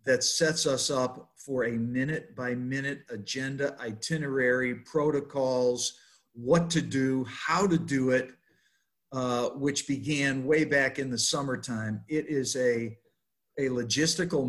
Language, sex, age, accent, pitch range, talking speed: English, male, 50-69, American, 125-150 Hz, 125 wpm